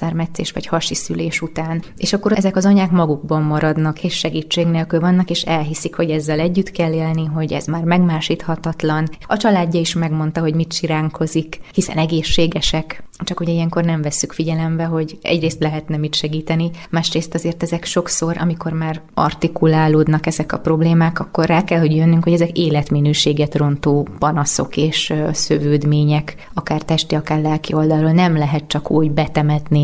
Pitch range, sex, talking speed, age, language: 155-170 Hz, female, 155 wpm, 20-39, Hungarian